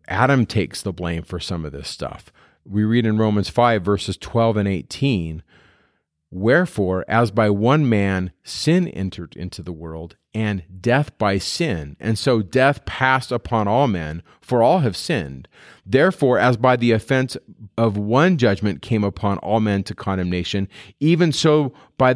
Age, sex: 40-59, male